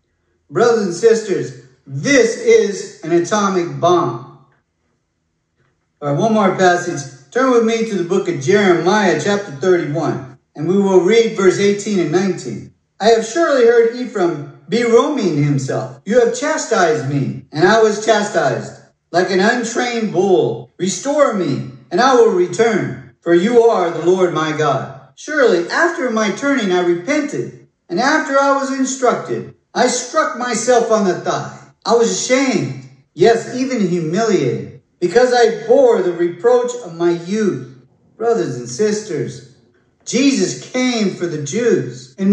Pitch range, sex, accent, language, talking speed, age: 175-250 Hz, male, American, English, 145 wpm, 50-69